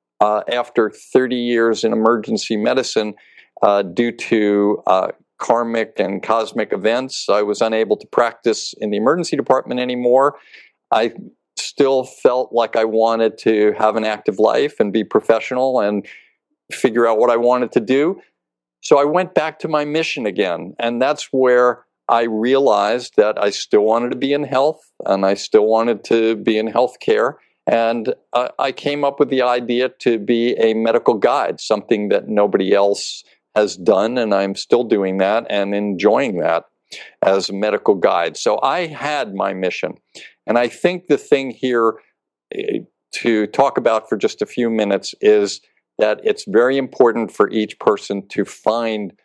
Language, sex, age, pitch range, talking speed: English, male, 50-69, 100-125 Hz, 165 wpm